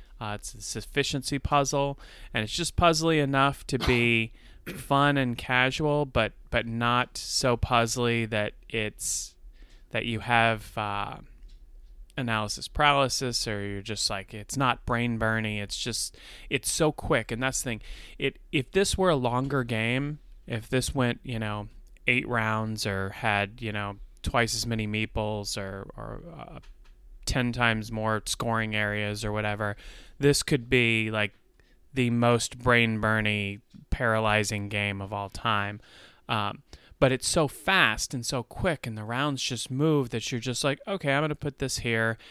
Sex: male